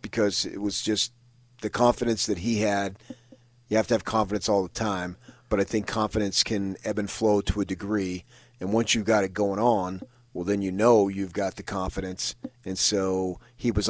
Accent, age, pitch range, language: American, 40-59, 95-120 Hz, English